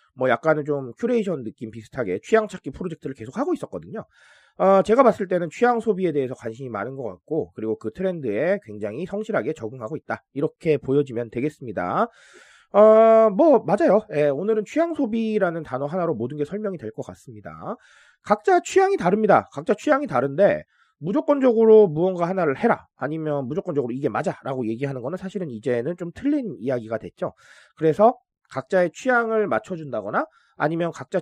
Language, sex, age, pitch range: Korean, male, 30-49, 135-220 Hz